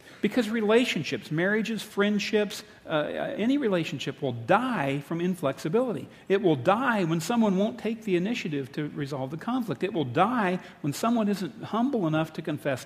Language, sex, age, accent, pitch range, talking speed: English, male, 50-69, American, 135-200 Hz, 160 wpm